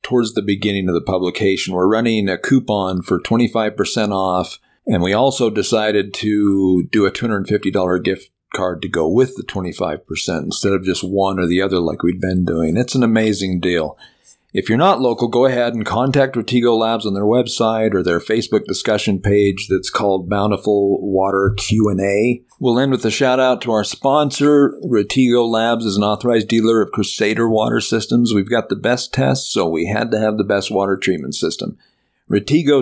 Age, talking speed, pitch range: 50-69, 185 wpm, 95-115 Hz